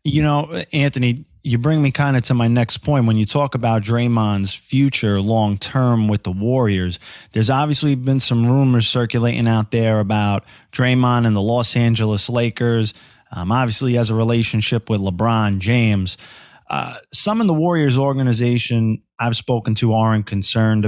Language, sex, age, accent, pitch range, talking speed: English, male, 30-49, American, 105-130 Hz, 165 wpm